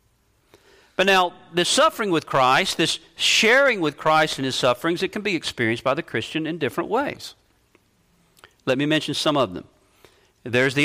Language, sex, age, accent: English, male, 50-69, American